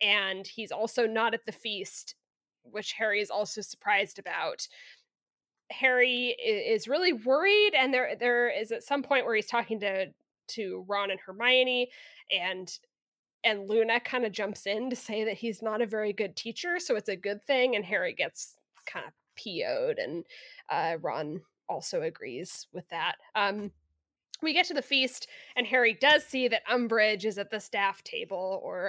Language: English